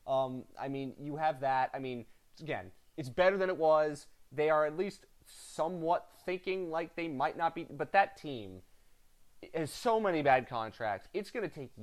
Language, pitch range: English, 125-165 Hz